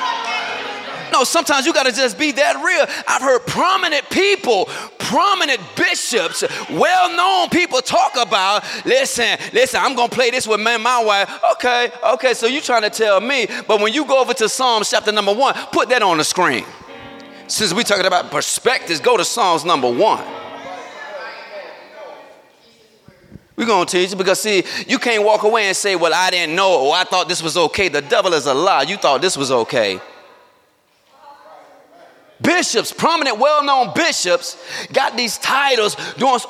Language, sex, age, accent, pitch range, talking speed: English, male, 30-49, American, 205-330 Hz, 170 wpm